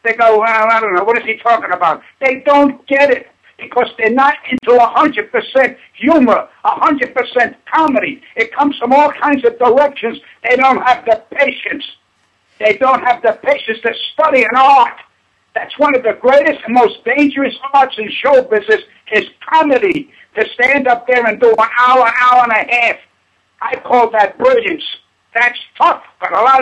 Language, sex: English, male